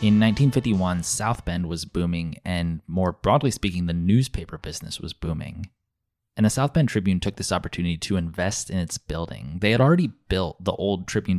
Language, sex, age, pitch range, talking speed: English, male, 20-39, 90-115 Hz, 185 wpm